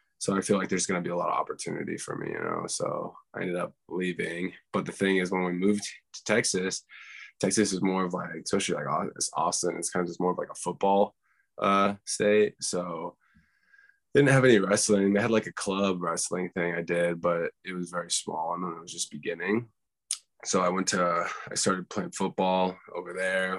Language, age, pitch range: English, 20-39, 85-105 Hz